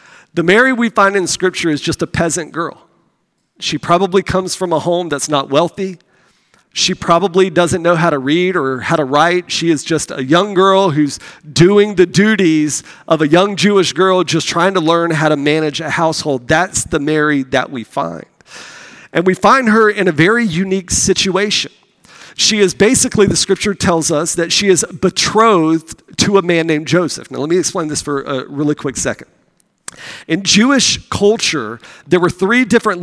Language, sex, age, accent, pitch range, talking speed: English, male, 40-59, American, 150-190 Hz, 185 wpm